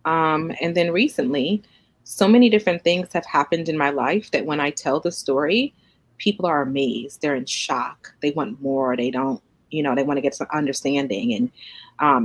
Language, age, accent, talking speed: English, 30-49, American, 195 wpm